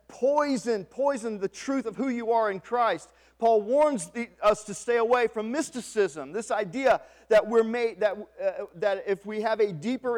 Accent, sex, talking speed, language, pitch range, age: American, male, 190 wpm, English, 200-250 Hz, 40-59